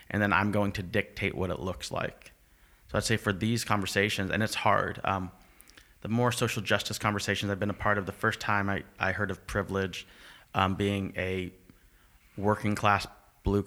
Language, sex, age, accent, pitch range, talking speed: English, male, 30-49, American, 95-105 Hz, 195 wpm